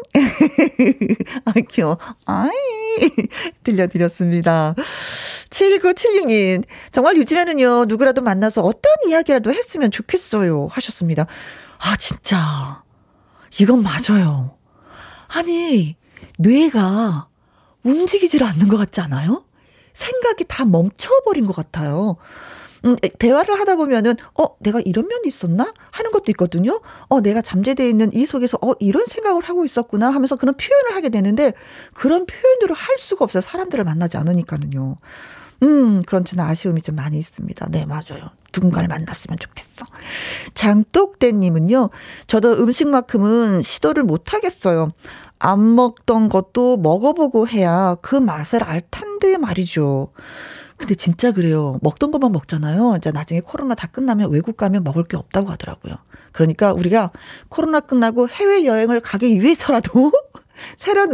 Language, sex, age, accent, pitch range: Korean, female, 40-59, native, 180-285 Hz